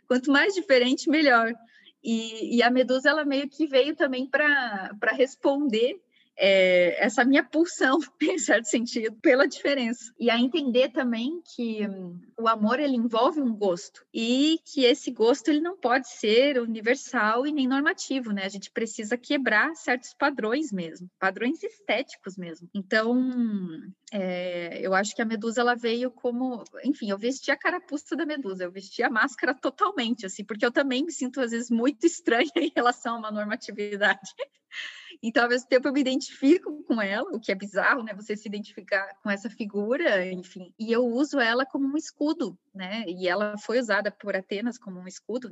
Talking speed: 175 wpm